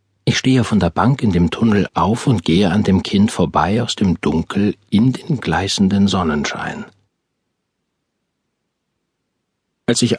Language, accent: German, German